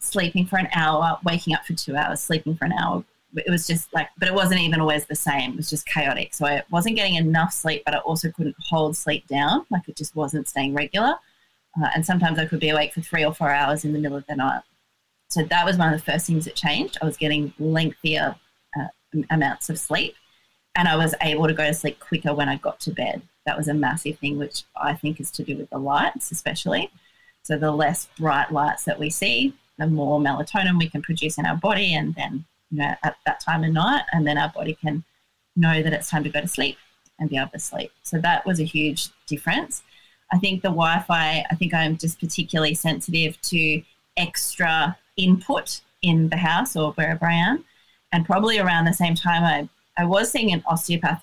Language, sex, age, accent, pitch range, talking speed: English, female, 30-49, Australian, 150-170 Hz, 225 wpm